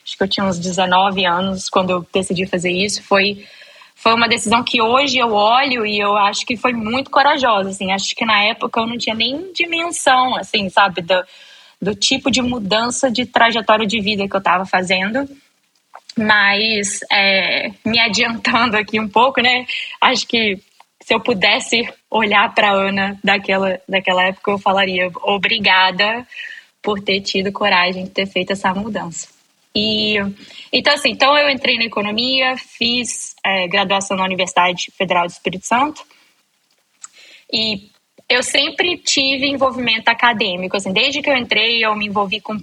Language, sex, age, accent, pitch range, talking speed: Portuguese, female, 10-29, Brazilian, 195-250 Hz, 165 wpm